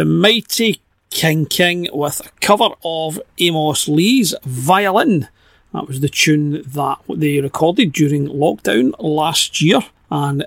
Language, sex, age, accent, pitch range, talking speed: English, male, 40-59, British, 145-190 Hz, 130 wpm